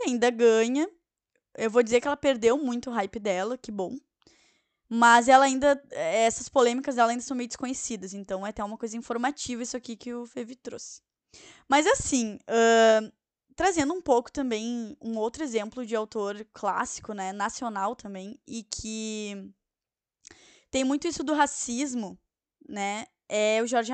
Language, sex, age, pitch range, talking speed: Portuguese, female, 10-29, 220-265 Hz, 155 wpm